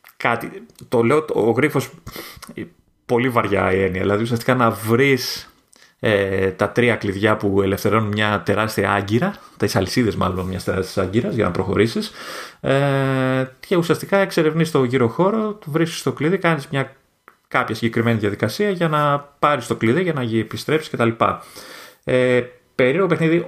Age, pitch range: 30-49, 105-150 Hz